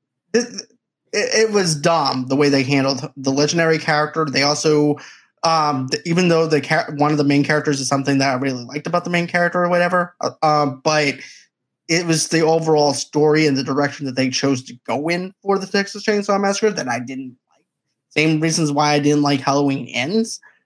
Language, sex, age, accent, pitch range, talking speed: English, male, 20-39, American, 145-175 Hz, 200 wpm